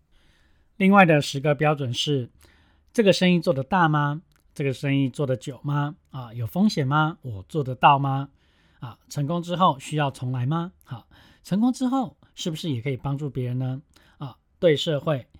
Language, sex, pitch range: Chinese, male, 130-160 Hz